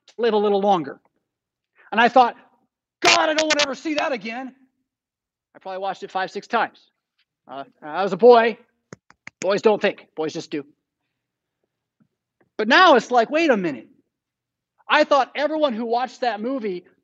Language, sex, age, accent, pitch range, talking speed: English, male, 40-59, American, 200-290 Hz, 170 wpm